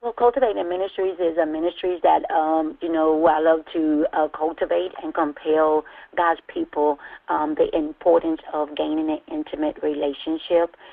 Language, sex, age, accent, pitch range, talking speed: English, female, 40-59, American, 155-175 Hz, 150 wpm